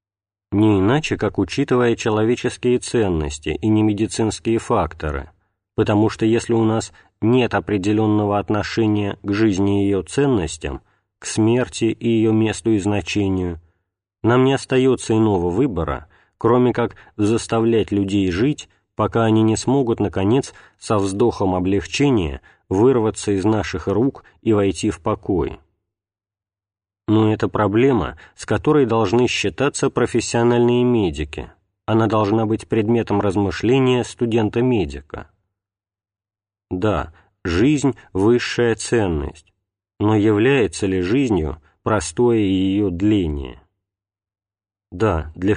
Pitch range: 100-115 Hz